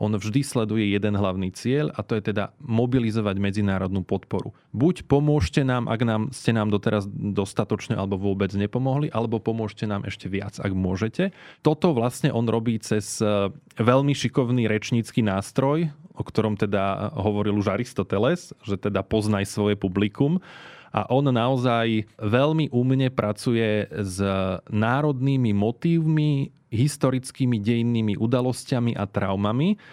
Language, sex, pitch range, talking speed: Slovak, male, 105-125 Hz, 130 wpm